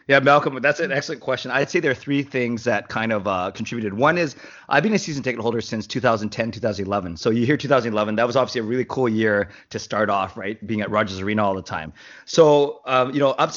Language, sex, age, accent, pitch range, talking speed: English, male, 30-49, American, 110-140 Hz, 245 wpm